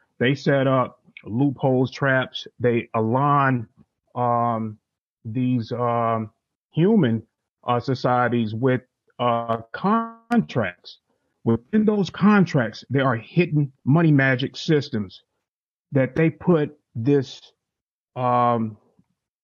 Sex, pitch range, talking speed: male, 120-145 Hz, 95 wpm